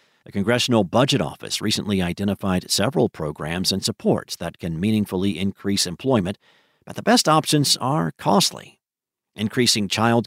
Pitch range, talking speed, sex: 100-130 Hz, 135 wpm, male